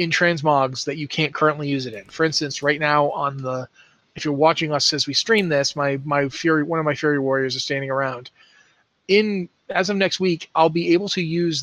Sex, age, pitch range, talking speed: male, 30-49, 140-175 Hz, 225 wpm